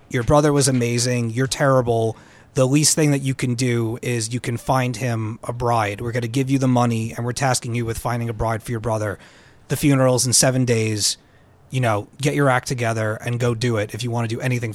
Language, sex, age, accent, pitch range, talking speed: English, male, 30-49, American, 115-135 Hz, 240 wpm